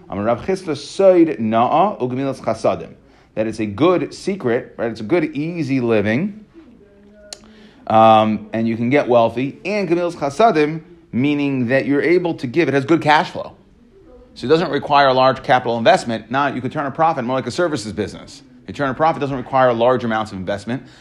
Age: 30-49